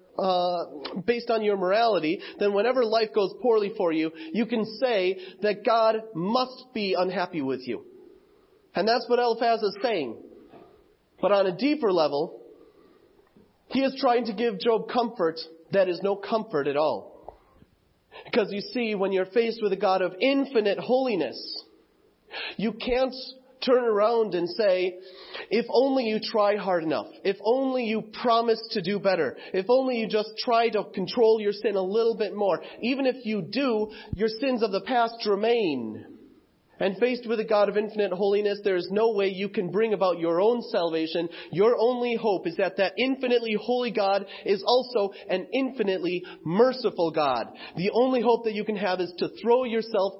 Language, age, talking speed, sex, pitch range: English, 30-49, 175 wpm, male, 195-245 Hz